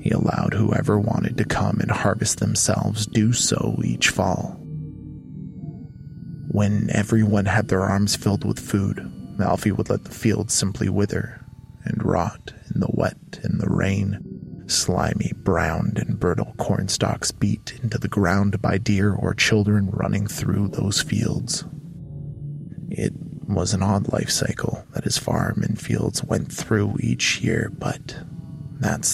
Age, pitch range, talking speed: 20-39, 100-125 Hz, 145 wpm